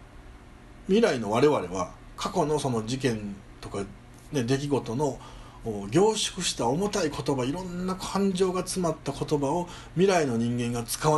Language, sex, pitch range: Japanese, male, 110-160 Hz